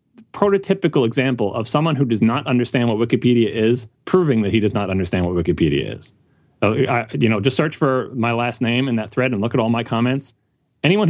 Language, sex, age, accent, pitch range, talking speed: English, male, 30-49, American, 125-170 Hz, 210 wpm